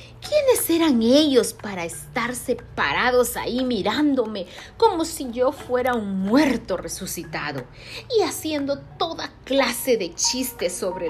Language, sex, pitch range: Spanish, female, 185-270 Hz